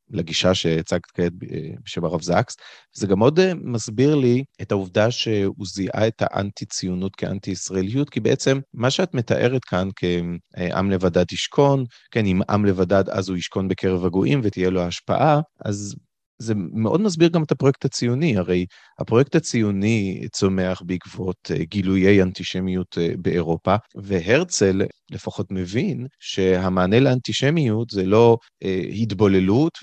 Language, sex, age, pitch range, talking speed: Hebrew, male, 30-49, 95-125 Hz, 125 wpm